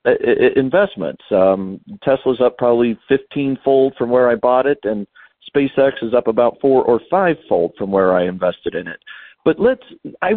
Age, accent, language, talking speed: 50-69, American, English, 160 wpm